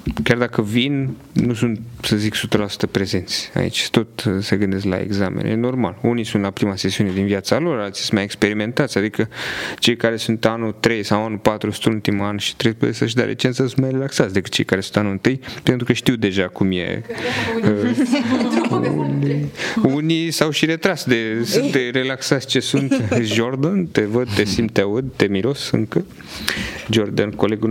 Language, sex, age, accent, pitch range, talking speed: Romanian, male, 30-49, native, 105-125 Hz, 180 wpm